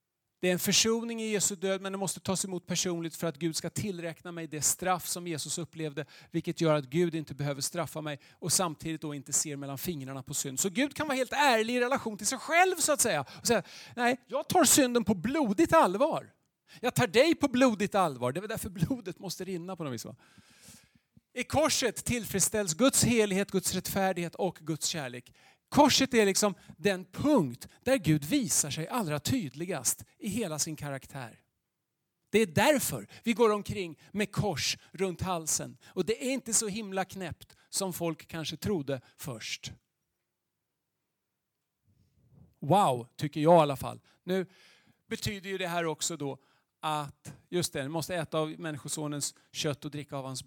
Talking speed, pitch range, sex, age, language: 185 wpm, 150-210 Hz, male, 40-59, Swedish